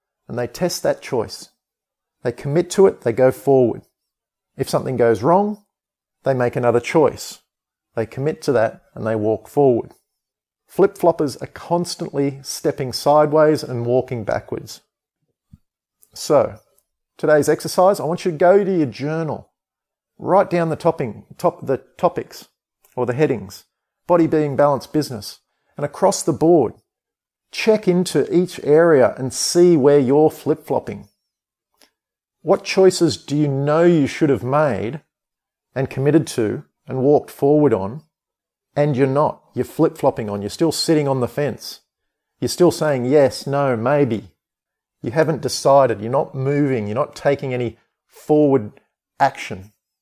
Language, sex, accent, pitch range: English, male, Australian, 130-165 Hz